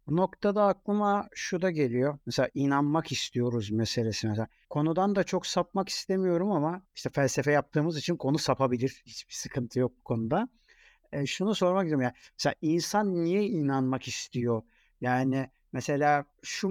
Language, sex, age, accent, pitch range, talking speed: Turkish, male, 60-79, native, 130-190 Hz, 145 wpm